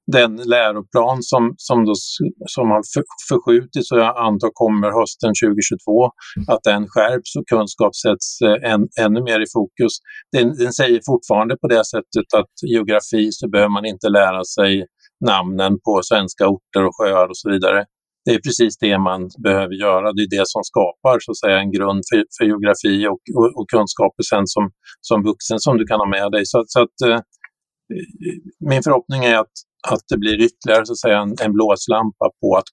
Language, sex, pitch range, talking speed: Swedish, male, 105-125 Hz, 185 wpm